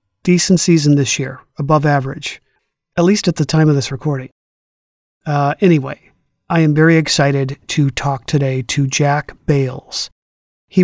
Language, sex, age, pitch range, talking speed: English, male, 40-59, 140-160 Hz, 150 wpm